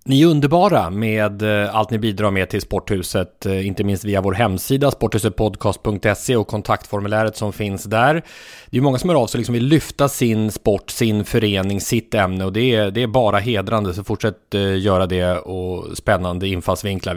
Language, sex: English, male